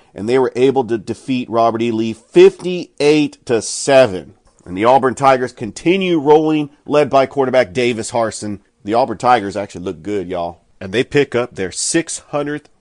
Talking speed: 160 wpm